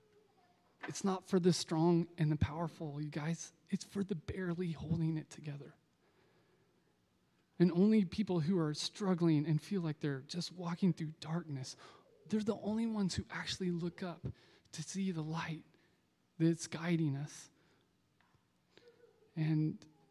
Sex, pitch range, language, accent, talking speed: male, 150-170 Hz, English, American, 140 wpm